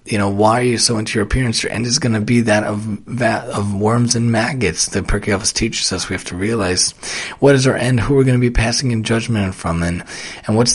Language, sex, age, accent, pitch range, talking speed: English, male, 30-49, American, 100-120 Hz, 260 wpm